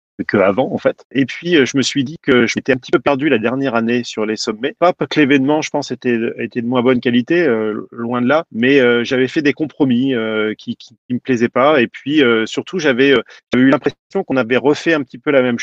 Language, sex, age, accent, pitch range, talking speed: French, male, 30-49, French, 120-145 Hz, 260 wpm